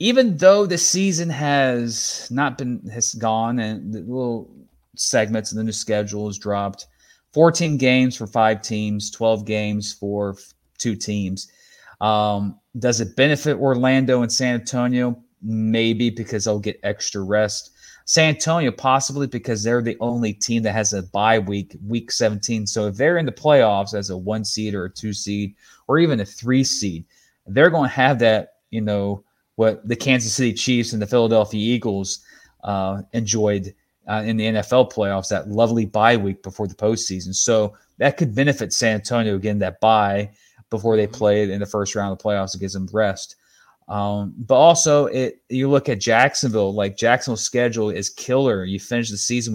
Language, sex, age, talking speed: English, male, 30-49, 180 wpm